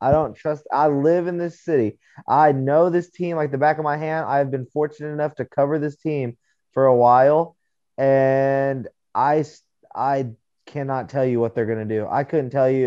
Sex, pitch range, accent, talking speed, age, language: male, 125-150 Hz, American, 205 wpm, 20-39, English